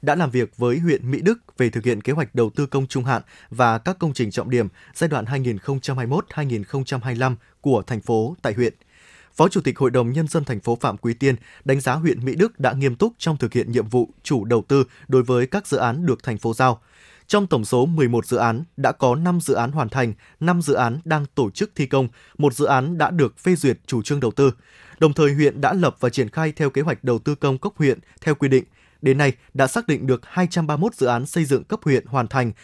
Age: 20-39